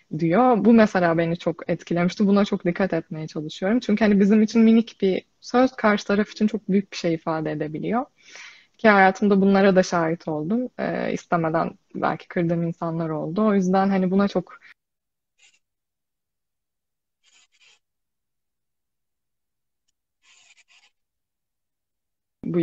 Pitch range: 175-205 Hz